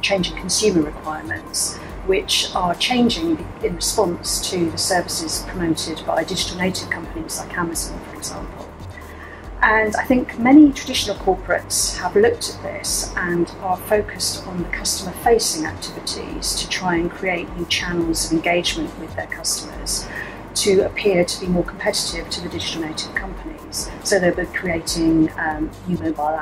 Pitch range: 155-215 Hz